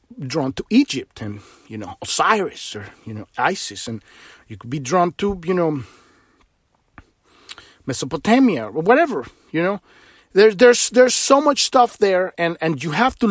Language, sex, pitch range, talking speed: English, male, 155-225 Hz, 160 wpm